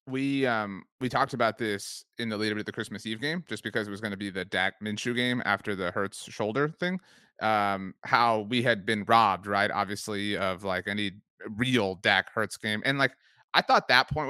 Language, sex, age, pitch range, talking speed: English, male, 30-49, 105-120 Hz, 220 wpm